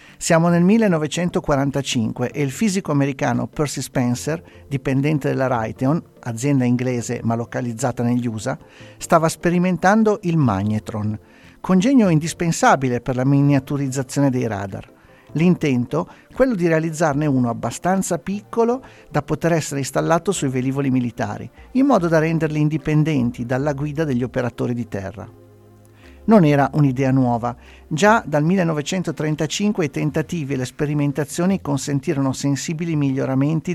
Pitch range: 125-170 Hz